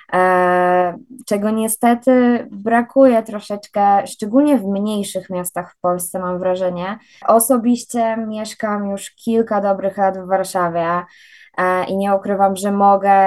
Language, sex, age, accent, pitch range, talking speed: Polish, female, 20-39, native, 180-215 Hz, 115 wpm